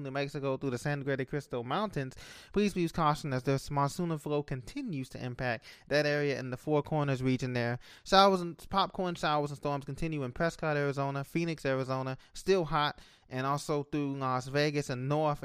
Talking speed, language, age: 180 wpm, English, 20-39